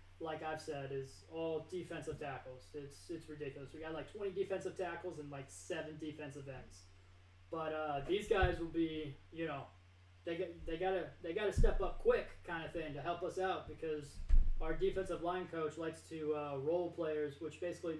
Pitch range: 145-180 Hz